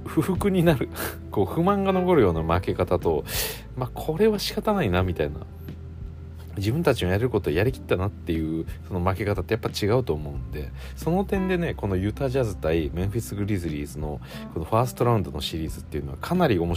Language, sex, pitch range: Japanese, male, 80-115 Hz